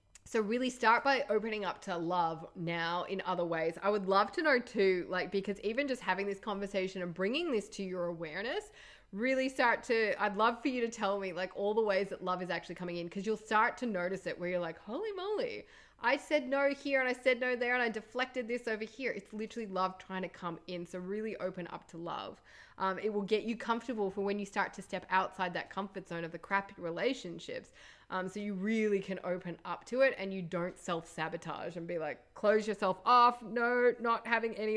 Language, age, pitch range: English, 20-39, 185-235 Hz